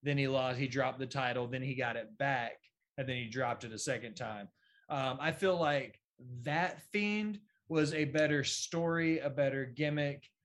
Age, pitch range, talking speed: 20-39, 130-155 Hz, 190 wpm